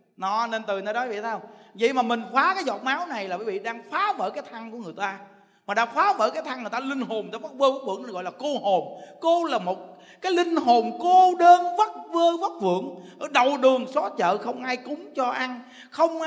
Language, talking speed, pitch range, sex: Vietnamese, 250 wpm, 235-335 Hz, male